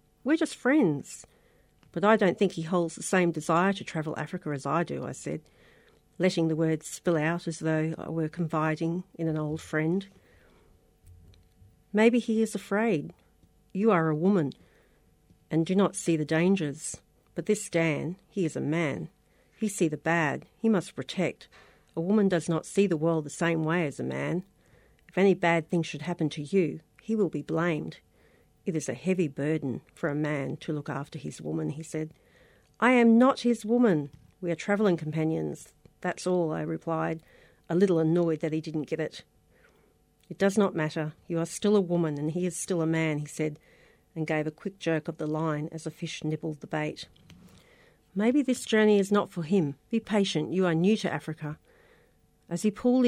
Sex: female